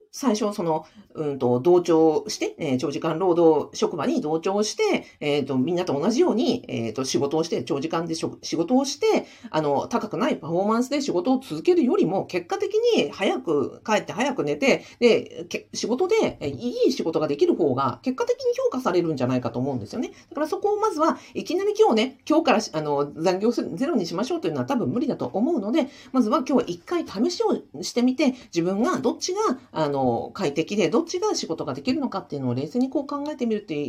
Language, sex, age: Japanese, female, 50-69